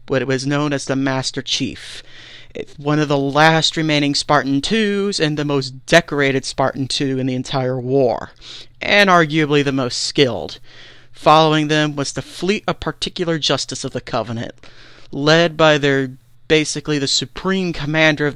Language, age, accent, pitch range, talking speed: English, 40-59, American, 135-165 Hz, 160 wpm